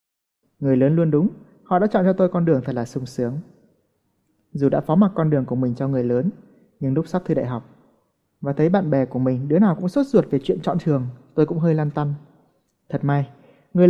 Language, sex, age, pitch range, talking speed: Vietnamese, male, 20-39, 130-175 Hz, 235 wpm